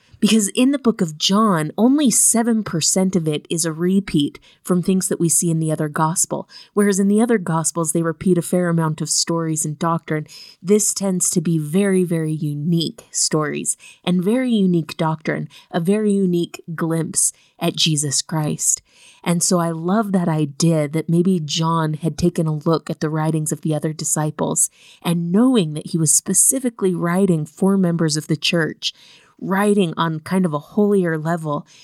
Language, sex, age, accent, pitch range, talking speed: English, female, 30-49, American, 160-190 Hz, 175 wpm